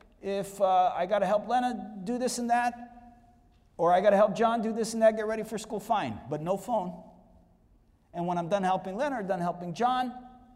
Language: English